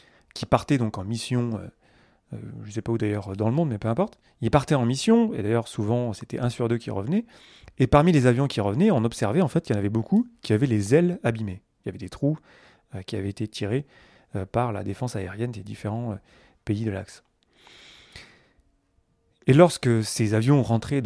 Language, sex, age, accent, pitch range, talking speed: French, male, 30-49, French, 105-140 Hz, 215 wpm